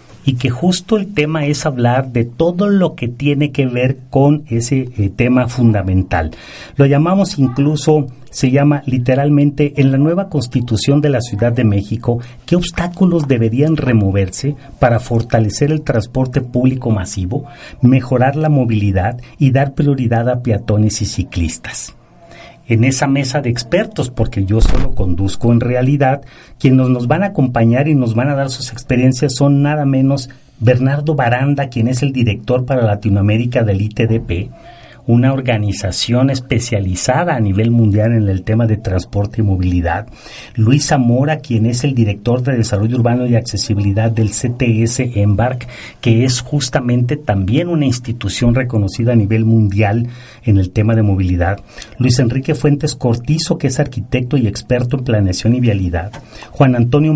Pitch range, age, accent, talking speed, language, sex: 110-140 Hz, 40-59, Mexican, 155 wpm, Spanish, male